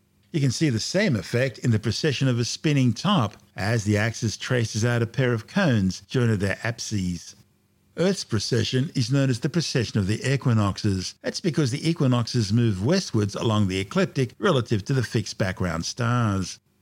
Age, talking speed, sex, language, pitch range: 50-69, 180 wpm, male, English, 100-125 Hz